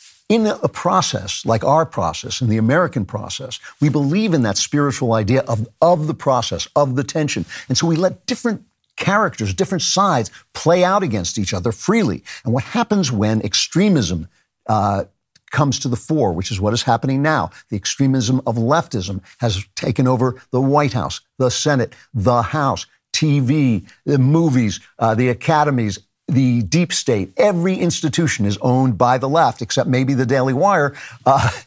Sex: male